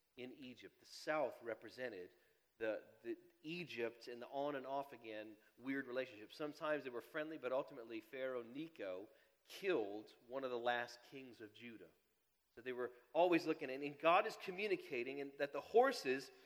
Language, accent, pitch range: English, American, 120-165 Hz